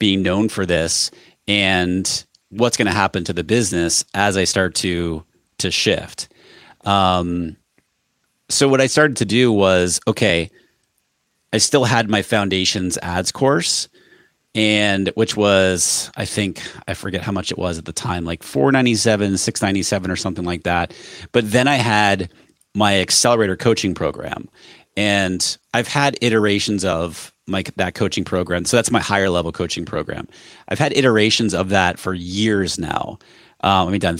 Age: 30-49